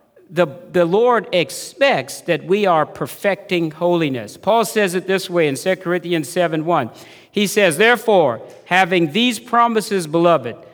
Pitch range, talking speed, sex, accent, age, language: 155-200 Hz, 145 wpm, male, American, 50-69, English